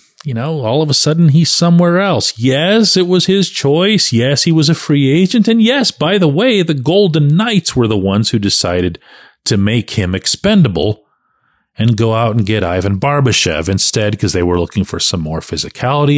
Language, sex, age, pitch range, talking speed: English, male, 40-59, 105-165 Hz, 195 wpm